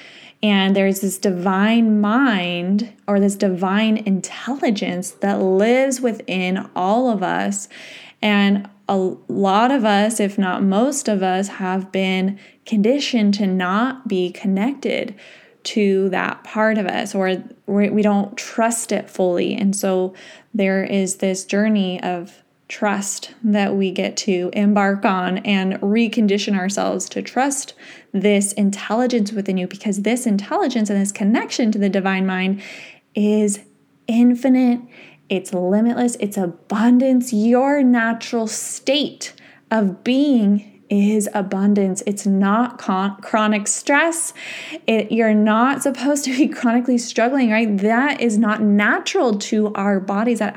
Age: 20-39